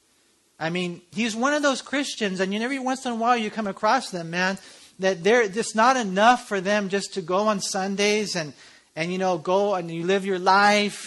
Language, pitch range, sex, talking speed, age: English, 160-210 Hz, male, 210 wpm, 40-59